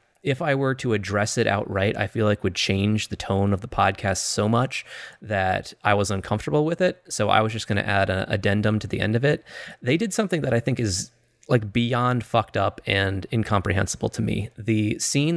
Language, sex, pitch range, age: English, male, 100-120 Hz, 20-39